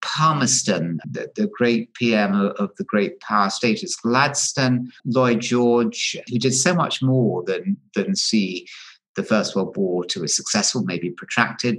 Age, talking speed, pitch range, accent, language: 50-69, 155 wpm, 110-175 Hz, British, English